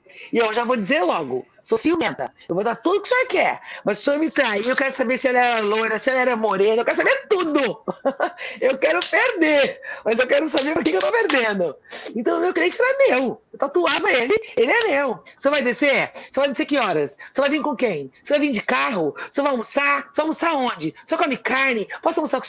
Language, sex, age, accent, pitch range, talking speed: Portuguese, female, 40-59, Brazilian, 230-330 Hz, 250 wpm